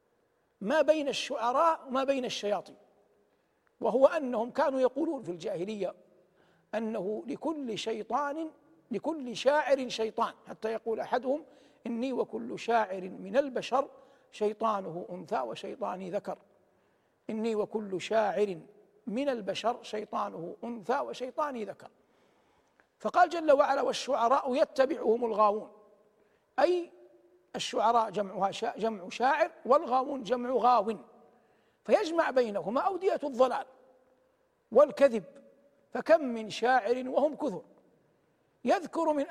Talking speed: 100 wpm